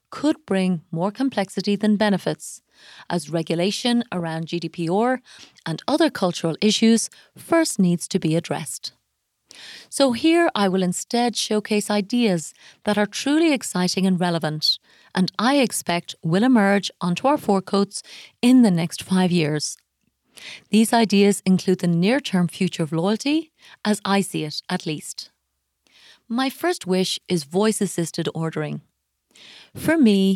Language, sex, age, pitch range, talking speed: English, female, 30-49, 175-230 Hz, 130 wpm